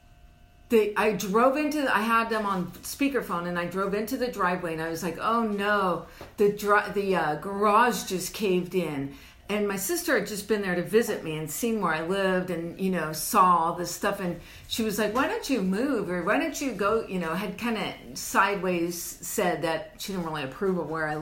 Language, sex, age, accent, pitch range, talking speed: English, female, 50-69, American, 180-245 Hz, 225 wpm